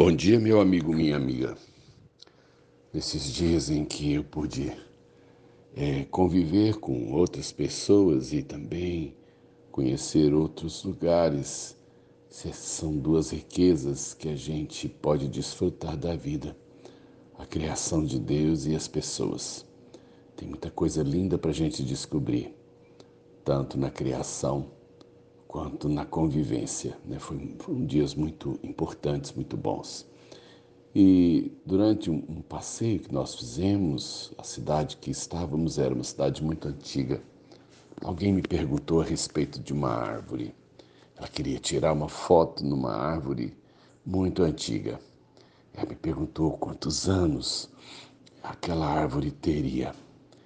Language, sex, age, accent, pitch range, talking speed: Portuguese, male, 60-79, Brazilian, 65-90 Hz, 120 wpm